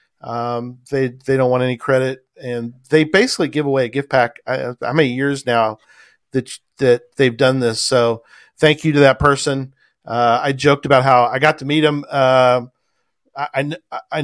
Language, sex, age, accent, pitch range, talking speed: English, male, 40-59, American, 120-145 Hz, 180 wpm